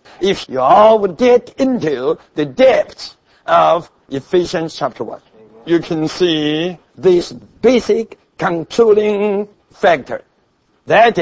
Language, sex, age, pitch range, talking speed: English, male, 60-79, 175-245 Hz, 100 wpm